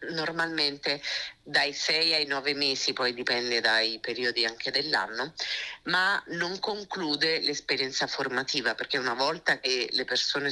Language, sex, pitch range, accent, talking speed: Italian, female, 115-140 Hz, native, 130 wpm